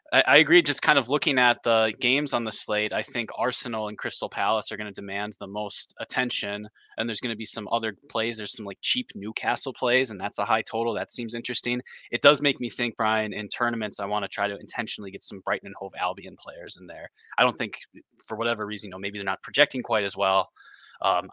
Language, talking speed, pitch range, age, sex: English, 240 wpm, 105-130 Hz, 20-39, male